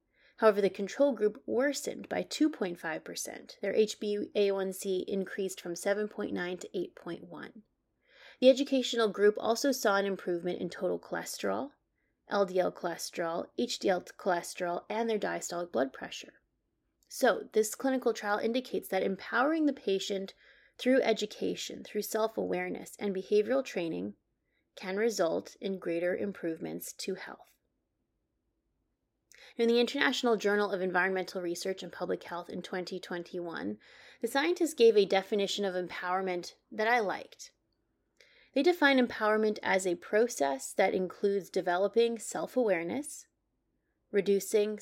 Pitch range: 180-230 Hz